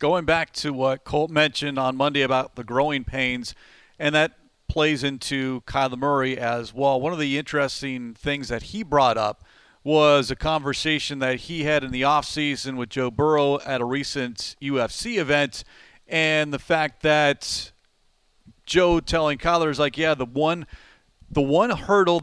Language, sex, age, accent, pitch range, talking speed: English, male, 40-59, American, 135-165 Hz, 165 wpm